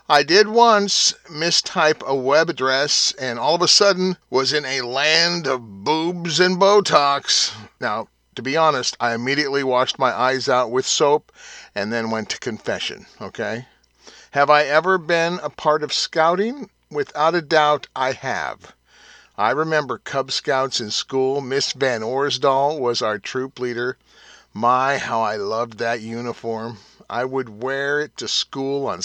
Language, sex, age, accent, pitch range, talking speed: English, male, 50-69, American, 125-165 Hz, 160 wpm